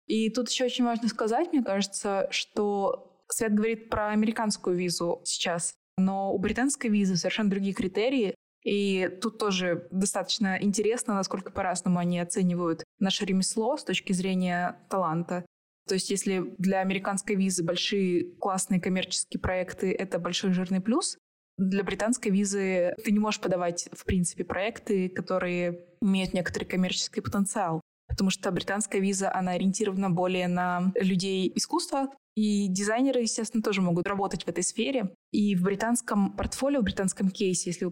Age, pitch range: 20-39, 180-220 Hz